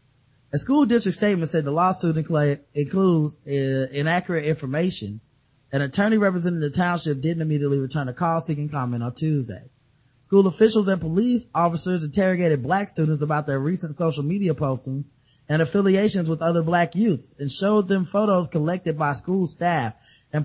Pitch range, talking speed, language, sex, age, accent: 135-185 Hz, 155 wpm, English, male, 20-39, American